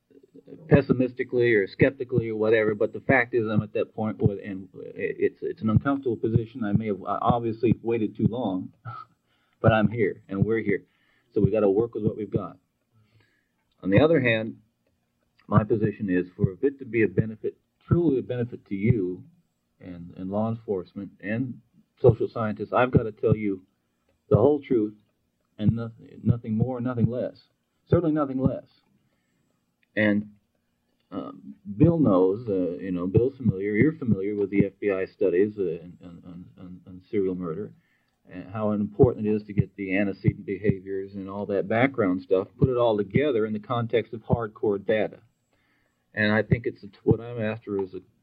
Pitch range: 95-125 Hz